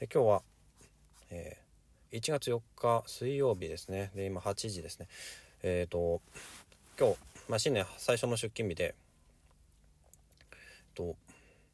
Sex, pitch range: male, 85-120 Hz